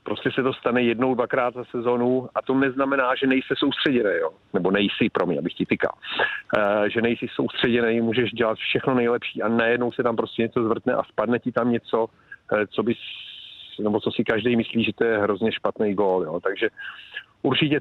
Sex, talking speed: male, 190 wpm